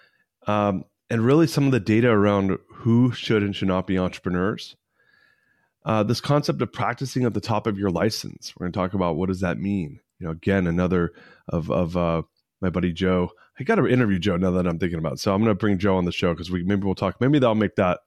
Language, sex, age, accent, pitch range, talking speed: English, male, 30-49, American, 95-115 Hz, 245 wpm